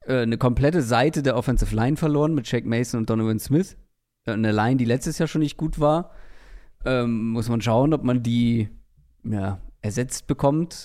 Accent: German